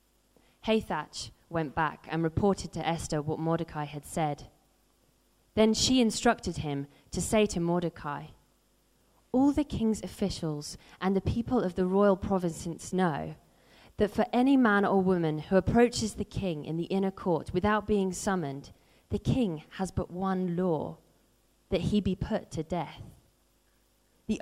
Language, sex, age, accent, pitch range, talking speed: English, female, 20-39, British, 160-210 Hz, 150 wpm